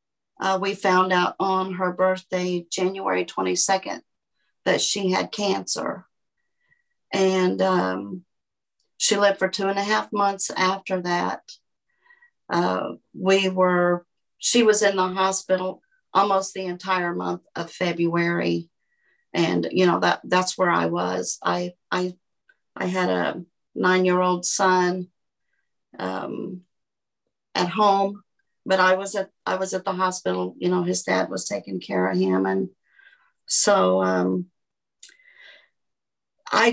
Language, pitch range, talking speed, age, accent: English, 180-205 Hz, 130 wpm, 50-69, American